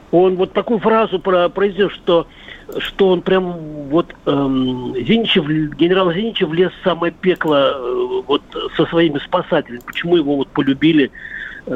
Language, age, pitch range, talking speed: Russian, 50-69, 145-190 Hz, 130 wpm